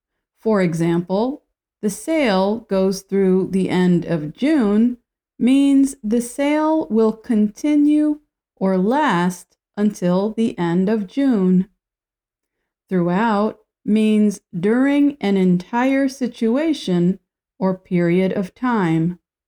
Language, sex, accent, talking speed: English, female, American, 100 wpm